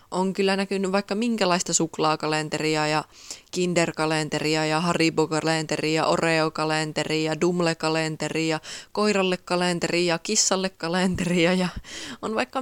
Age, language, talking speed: 20-39, Finnish, 80 wpm